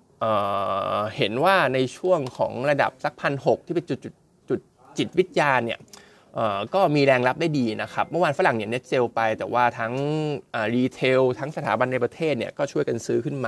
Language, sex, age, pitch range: Thai, male, 20-39, 115-145 Hz